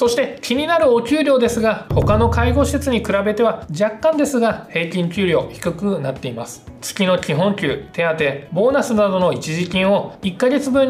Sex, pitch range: male, 155-230 Hz